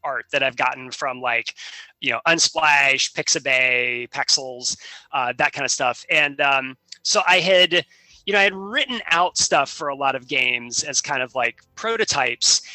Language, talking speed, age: English, 180 wpm, 30-49